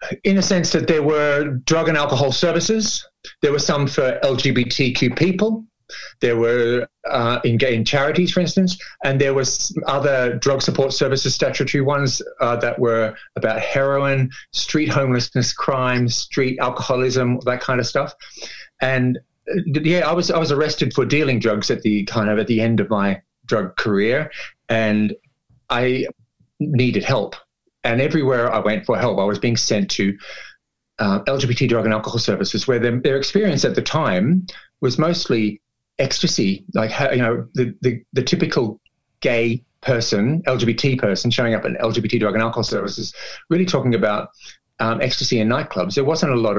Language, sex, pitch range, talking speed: English, male, 120-150 Hz, 170 wpm